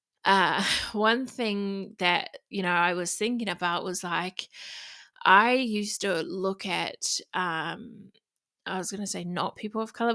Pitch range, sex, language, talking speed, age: 175-200 Hz, female, English, 155 wpm, 20-39